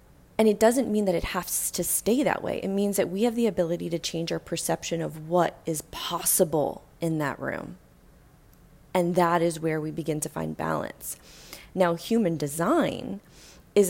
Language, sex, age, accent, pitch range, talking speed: English, female, 20-39, American, 155-185 Hz, 180 wpm